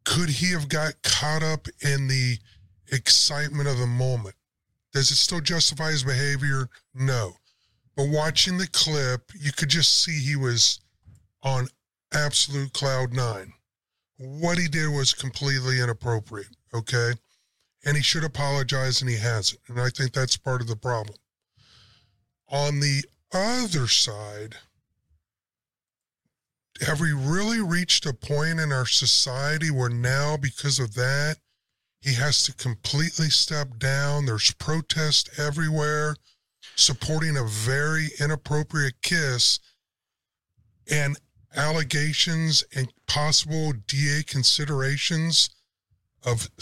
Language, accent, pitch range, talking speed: English, American, 120-150 Hz, 120 wpm